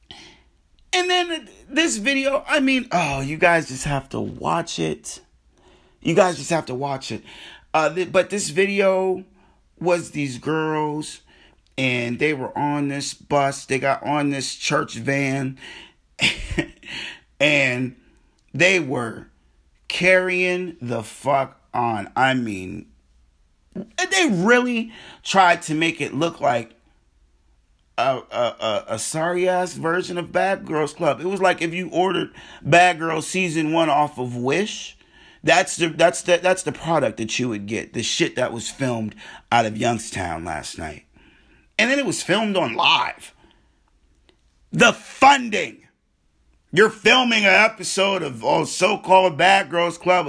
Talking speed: 145 wpm